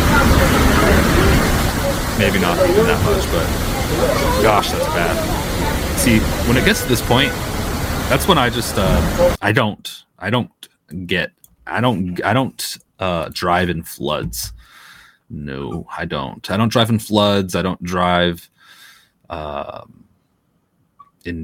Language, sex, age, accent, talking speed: English, male, 30-49, American, 130 wpm